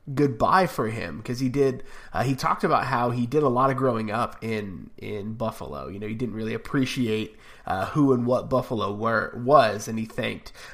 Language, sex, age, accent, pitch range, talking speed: English, male, 20-39, American, 115-135 Hz, 205 wpm